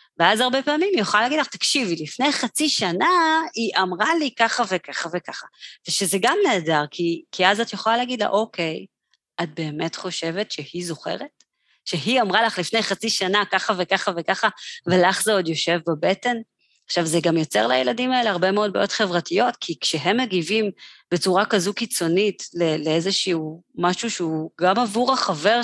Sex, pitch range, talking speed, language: female, 165-215 Hz, 165 wpm, Hebrew